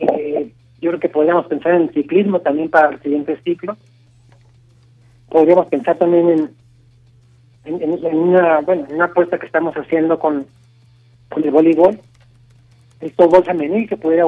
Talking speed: 155 wpm